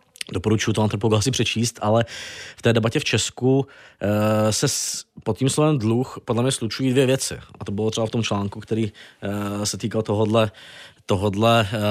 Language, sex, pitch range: Czech, male, 105-125 Hz